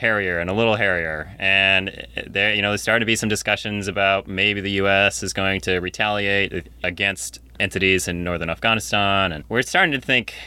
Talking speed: 190 wpm